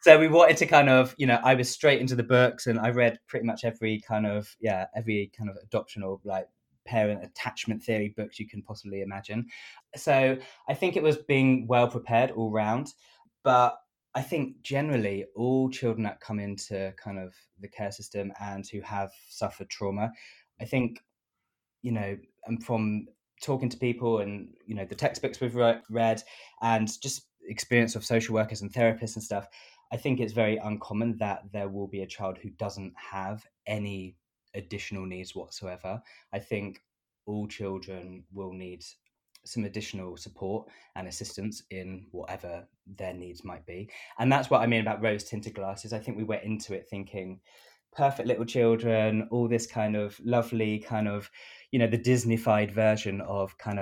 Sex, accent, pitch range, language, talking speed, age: male, British, 100-120 Hz, English, 180 wpm, 20-39